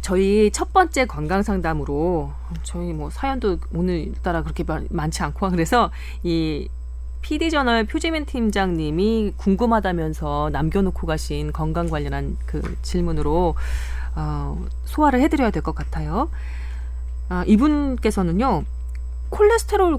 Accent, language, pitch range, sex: native, Korean, 145-220 Hz, female